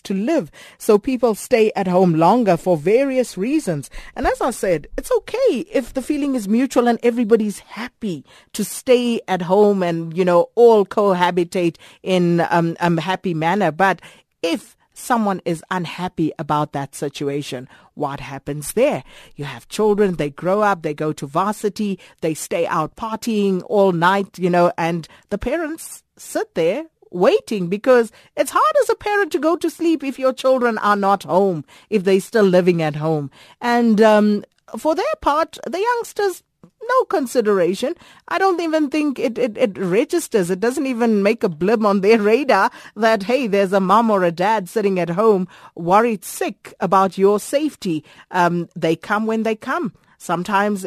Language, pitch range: English, 180-245 Hz